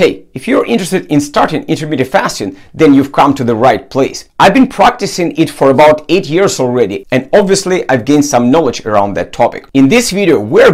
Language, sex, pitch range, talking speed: English, male, 135-185 Hz, 205 wpm